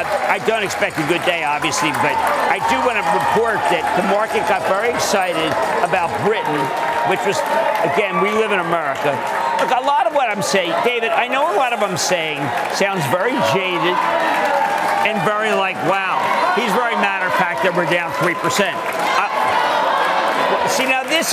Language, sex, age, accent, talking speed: English, male, 50-69, American, 175 wpm